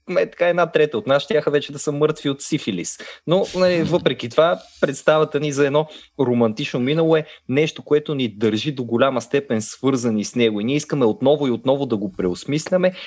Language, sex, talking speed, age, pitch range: Bulgarian, male, 200 wpm, 20-39, 105-140 Hz